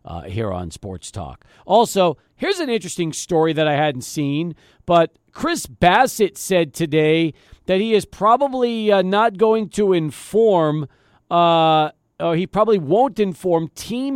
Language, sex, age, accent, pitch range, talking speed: English, male, 40-59, American, 160-210 Hz, 145 wpm